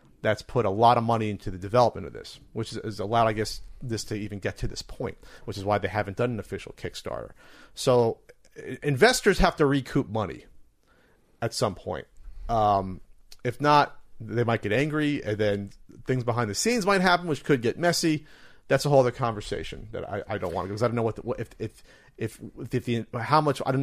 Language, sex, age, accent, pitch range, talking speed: English, male, 40-59, American, 105-135 Hz, 220 wpm